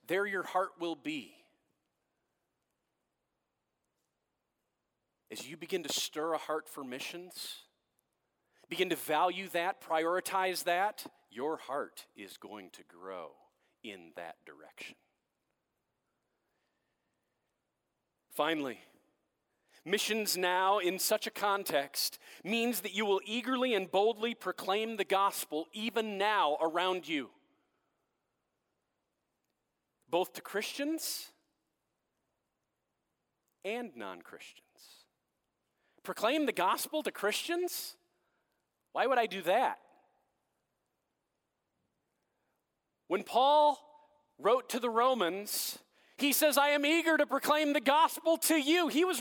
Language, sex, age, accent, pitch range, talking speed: English, male, 40-59, American, 190-295 Hz, 105 wpm